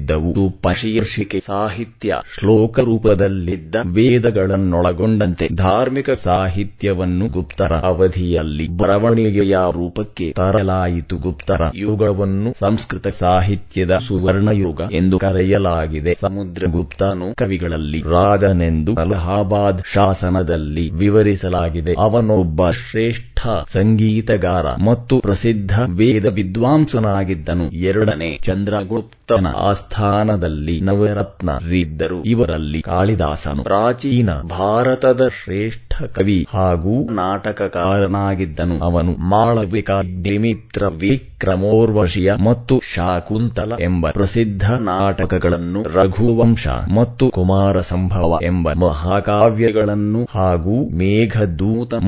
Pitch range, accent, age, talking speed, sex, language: 90-110 Hz, Indian, 30-49, 75 wpm, male, English